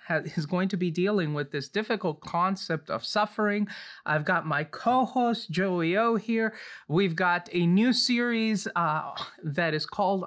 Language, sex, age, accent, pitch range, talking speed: English, male, 30-49, American, 160-210 Hz, 160 wpm